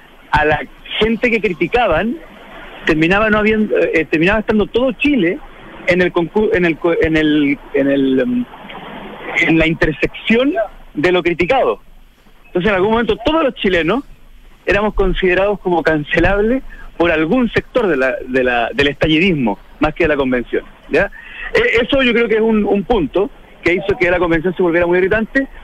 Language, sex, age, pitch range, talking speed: Spanish, male, 50-69, 155-225 Hz, 165 wpm